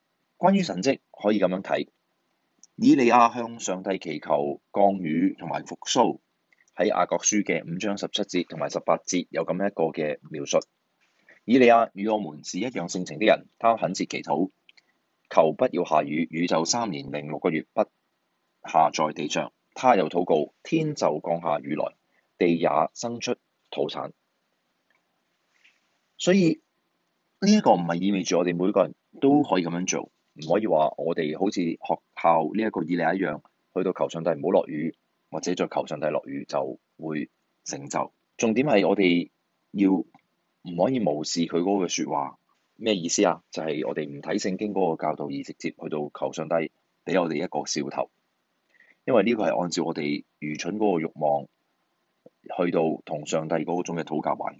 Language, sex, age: Chinese, male, 30-49